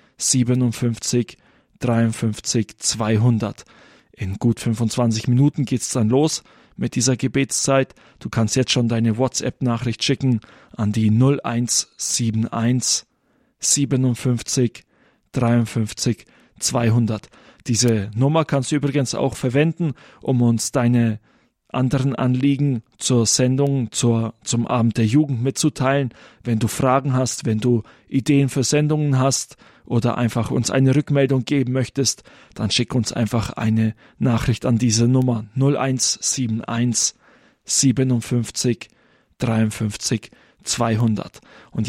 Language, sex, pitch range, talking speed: German, male, 115-135 Hz, 110 wpm